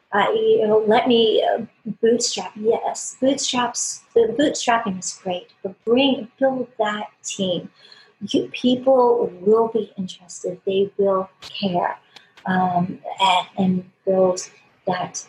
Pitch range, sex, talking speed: 190-230 Hz, female, 125 wpm